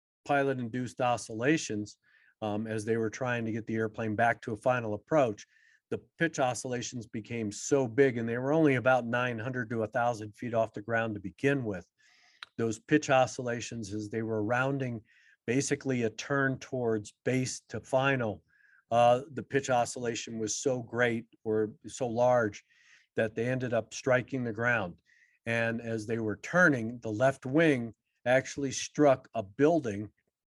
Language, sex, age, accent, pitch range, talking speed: English, male, 50-69, American, 110-130 Hz, 160 wpm